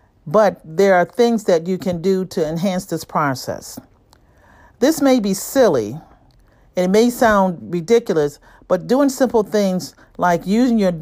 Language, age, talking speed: English, 50-69, 150 wpm